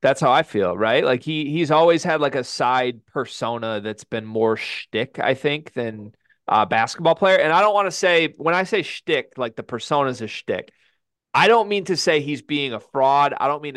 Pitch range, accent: 130-170 Hz, American